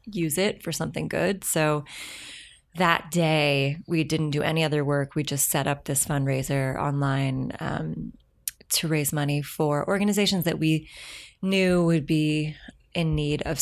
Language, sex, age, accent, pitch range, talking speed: English, female, 20-39, American, 145-175 Hz, 155 wpm